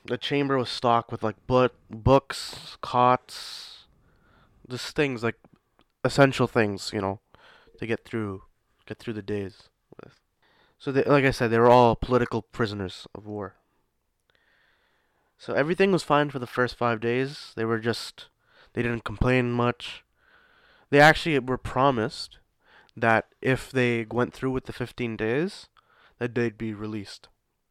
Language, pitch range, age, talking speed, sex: English, 110-125 Hz, 20-39, 150 wpm, male